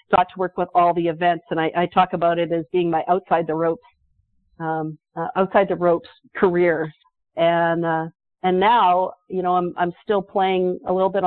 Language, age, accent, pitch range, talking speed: English, 50-69, American, 175-210 Hz, 200 wpm